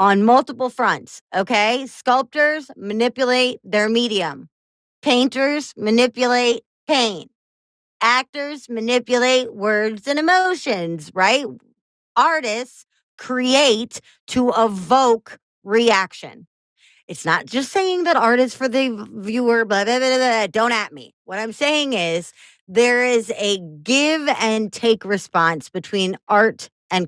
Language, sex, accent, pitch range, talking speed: English, female, American, 205-275 Hz, 120 wpm